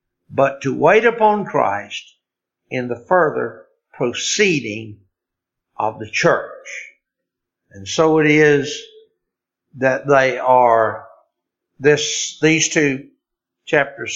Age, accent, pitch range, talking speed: 60-79, American, 125-185 Hz, 100 wpm